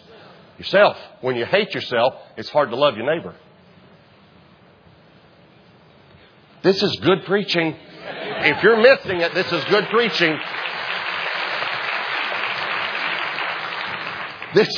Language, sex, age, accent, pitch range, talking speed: English, male, 50-69, American, 115-170 Hz, 95 wpm